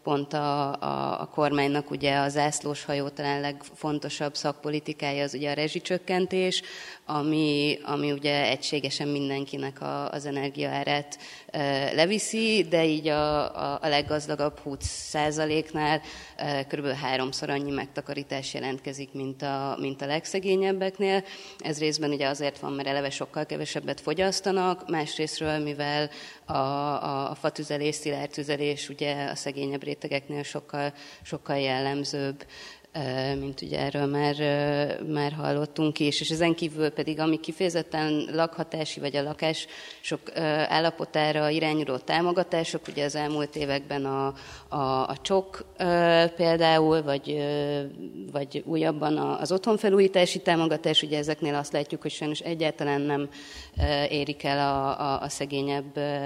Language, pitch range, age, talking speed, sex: Hungarian, 140-155 Hz, 30-49, 120 wpm, female